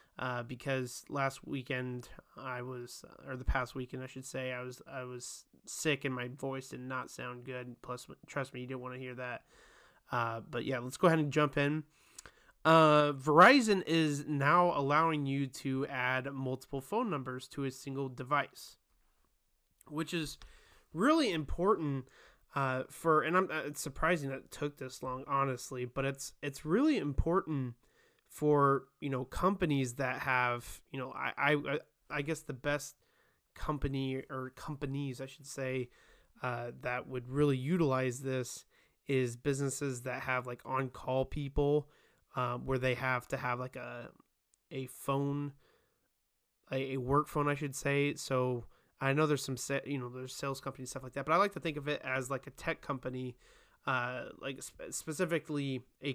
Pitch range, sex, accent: 130-145 Hz, male, American